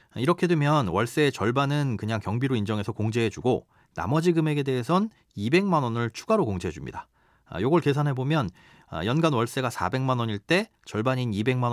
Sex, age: male, 40-59